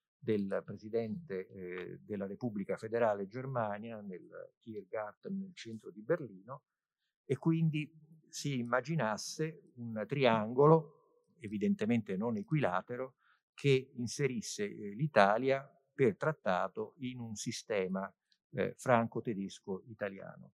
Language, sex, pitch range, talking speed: Italian, male, 105-155 Hz, 90 wpm